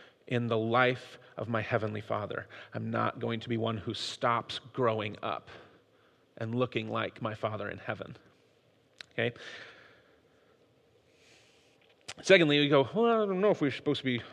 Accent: American